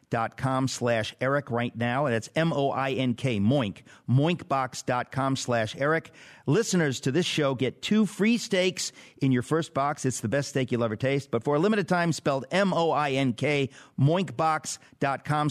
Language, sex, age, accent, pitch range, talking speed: English, male, 50-69, American, 120-160 Hz, 155 wpm